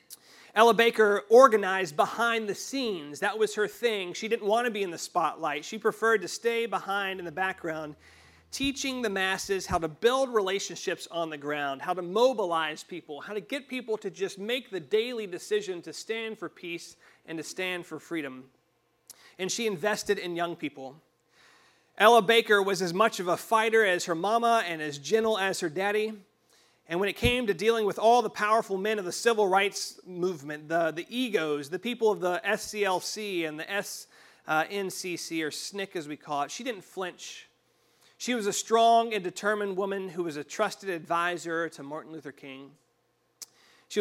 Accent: American